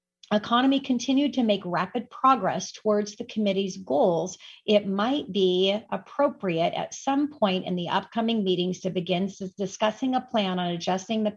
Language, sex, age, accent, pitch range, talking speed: English, female, 40-59, American, 185-230 Hz, 155 wpm